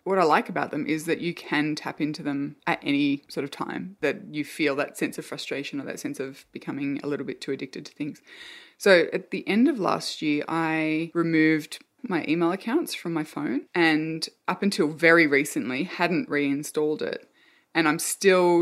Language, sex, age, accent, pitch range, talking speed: English, female, 20-39, Australian, 155-220 Hz, 200 wpm